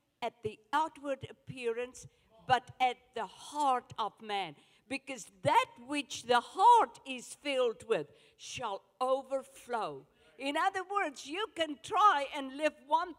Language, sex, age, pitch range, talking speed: English, female, 50-69, 245-320 Hz, 130 wpm